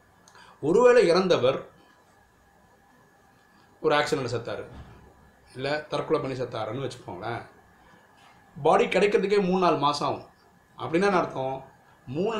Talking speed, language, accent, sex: 90 wpm, Tamil, native, male